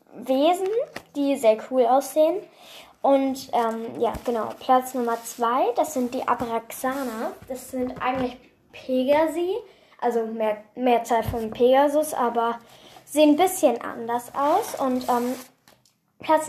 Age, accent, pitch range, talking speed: 10-29, German, 240-310 Hz, 125 wpm